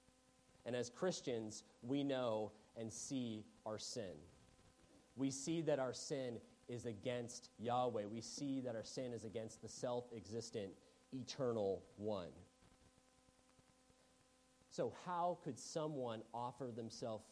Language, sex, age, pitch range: English, male, 30-49, 110-130 Hz